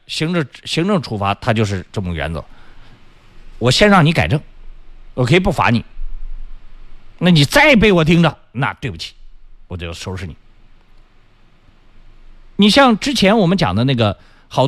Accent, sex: native, male